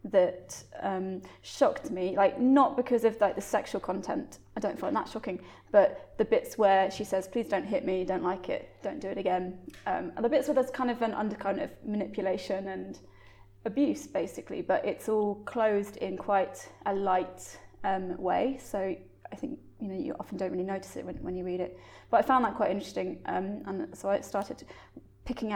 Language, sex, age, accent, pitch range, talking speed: English, female, 20-39, British, 195-230 Hz, 205 wpm